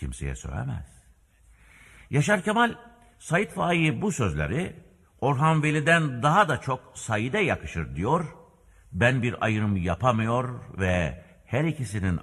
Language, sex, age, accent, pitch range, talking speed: Turkish, male, 60-79, native, 75-115 Hz, 115 wpm